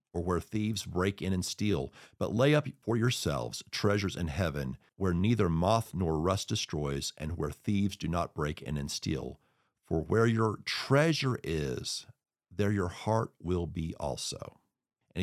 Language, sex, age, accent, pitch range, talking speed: English, male, 50-69, American, 85-105 Hz, 165 wpm